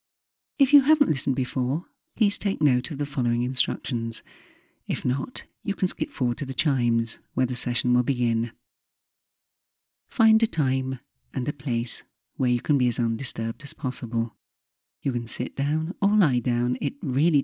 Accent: British